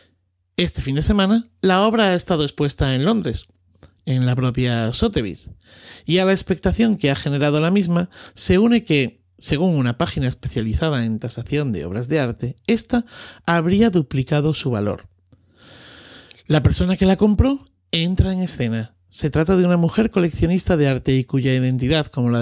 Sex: male